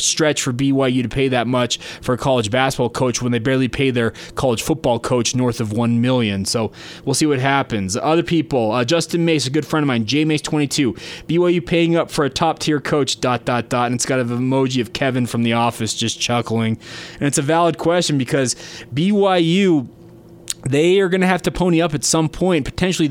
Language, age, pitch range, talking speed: English, 20-39, 125-160 Hz, 215 wpm